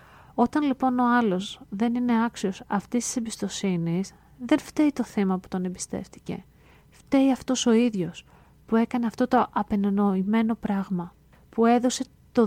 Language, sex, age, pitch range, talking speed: Greek, female, 30-49, 185-220 Hz, 145 wpm